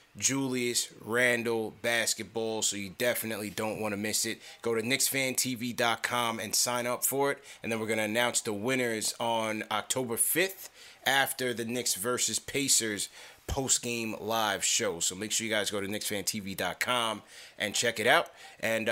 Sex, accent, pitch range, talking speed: male, American, 110-125 Hz, 165 wpm